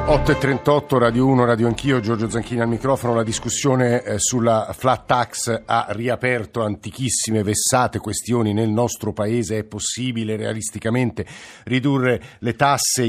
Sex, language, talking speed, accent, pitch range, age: male, Italian, 130 wpm, native, 105-130 Hz, 50-69